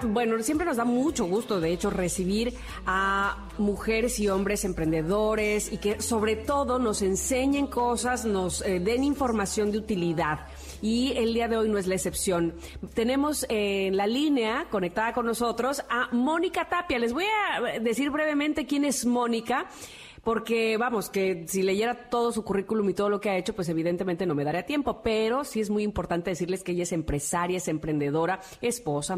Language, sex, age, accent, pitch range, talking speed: Spanish, female, 40-59, Mexican, 195-250 Hz, 180 wpm